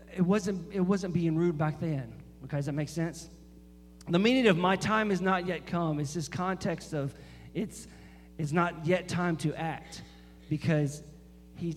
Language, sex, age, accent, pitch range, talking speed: English, male, 40-59, American, 135-185 Hz, 180 wpm